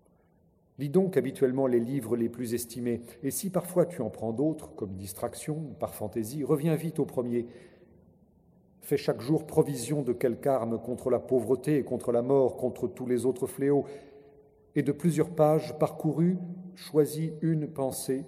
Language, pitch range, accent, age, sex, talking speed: French, 110-145 Hz, French, 40-59, male, 165 wpm